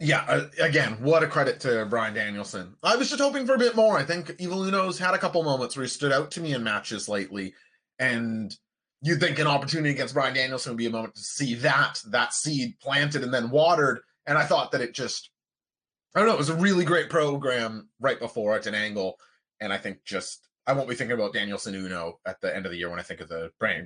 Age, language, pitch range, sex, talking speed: 30-49, English, 125-180 Hz, male, 240 wpm